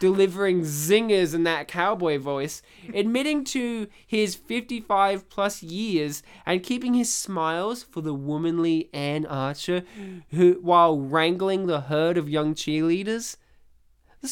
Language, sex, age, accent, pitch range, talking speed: English, male, 20-39, Australian, 160-215 Hz, 120 wpm